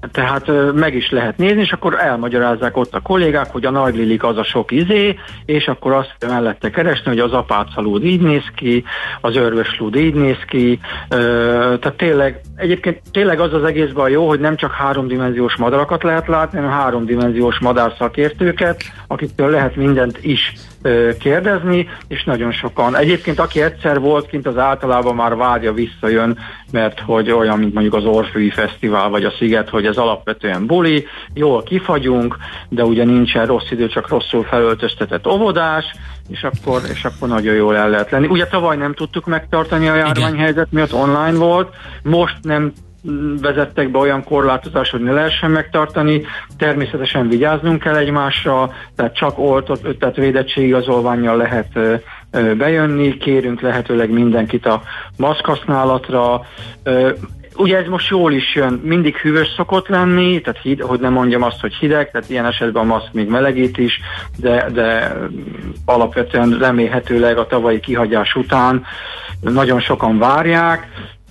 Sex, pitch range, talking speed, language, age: male, 120-155 Hz, 150 wpm, Hungarian, 50-69